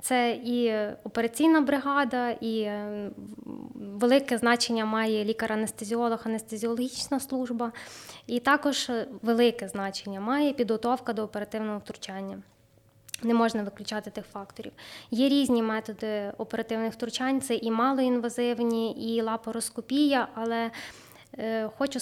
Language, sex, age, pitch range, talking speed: Ukrainian, female, 20-39, 220-245 Hz, 105 wpm